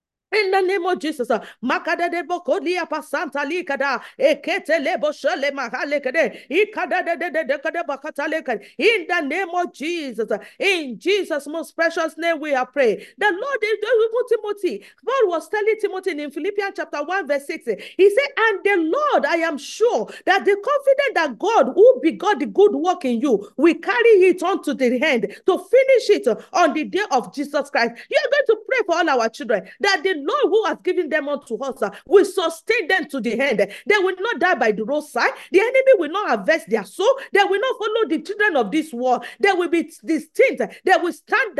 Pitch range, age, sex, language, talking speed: 290-420 Hz, 40-59, female, English, 180 wpm